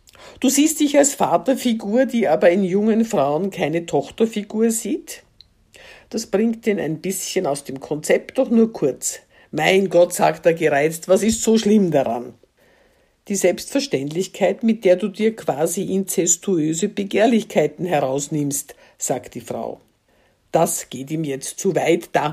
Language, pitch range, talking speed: German, 150-220 Hz, 145 wpm